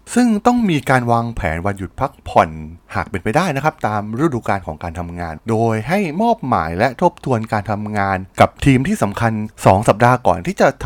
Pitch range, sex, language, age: 100-145 Hz, male, Thai, 20-39